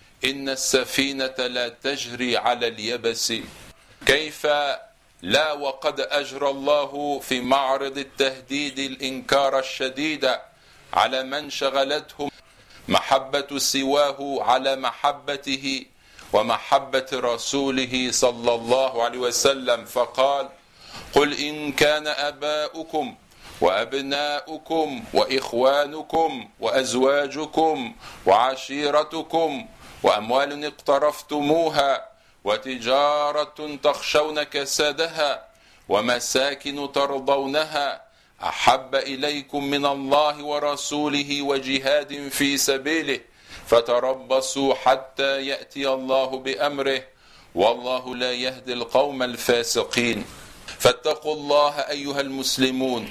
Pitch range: 130-145 Hz